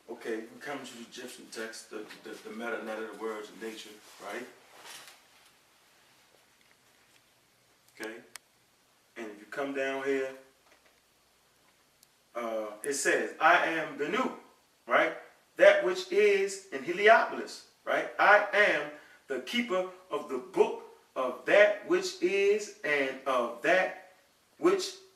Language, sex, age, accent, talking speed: English, male, 30-49, American, 125 wpm